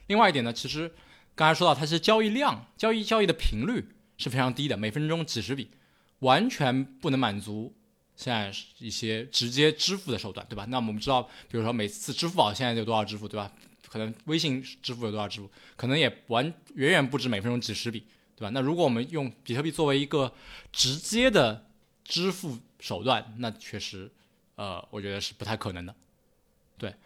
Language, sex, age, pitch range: Chinese, male, 20-39, 110-150 Hz